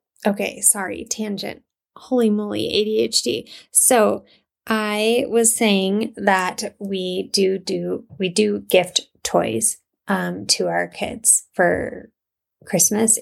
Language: English